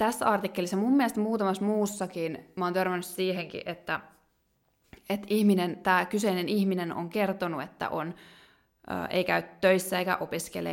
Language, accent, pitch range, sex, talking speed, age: Finnish, native, 170-200 Hz, female, 135 wpm, 20-39